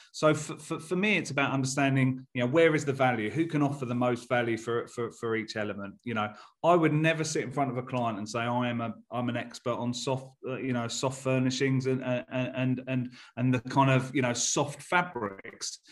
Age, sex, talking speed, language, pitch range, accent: 30-49, male, 240 wpm, English, 120-140 Hz, British